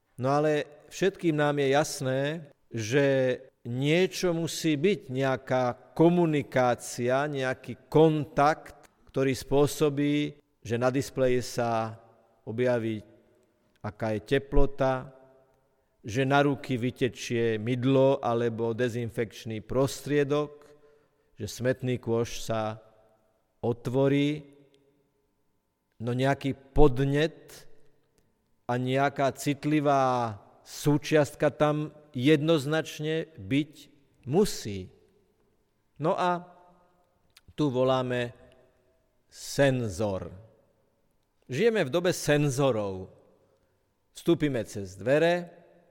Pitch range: 120-150 Hz